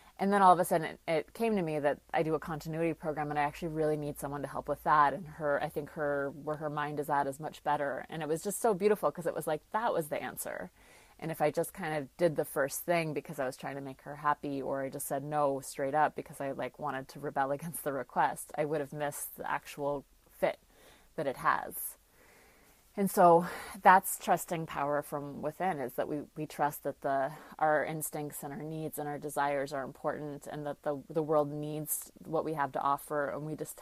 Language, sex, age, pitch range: English, female, 30-49, 145-160 Hz